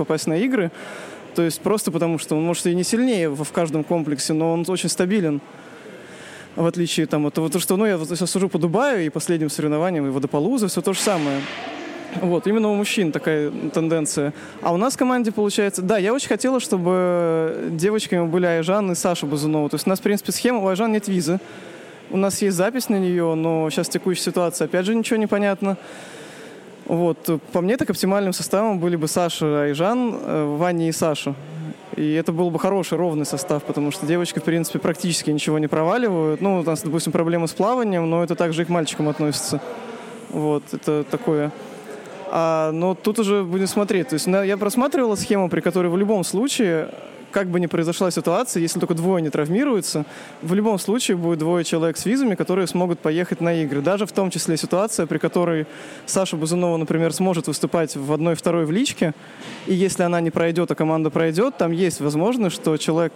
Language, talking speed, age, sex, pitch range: Russian, 195 wpm, 20-39, male, 160-195 Hz